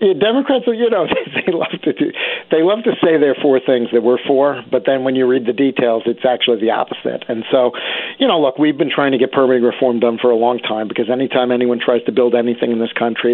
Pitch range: 125-160 Hz